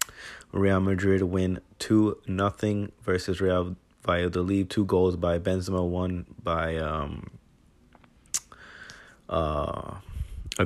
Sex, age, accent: male, 30-49, American